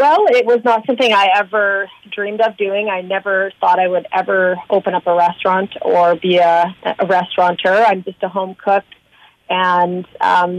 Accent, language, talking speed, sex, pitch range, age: American, English, 180 wpm, female, 185-210 Hz, 30-49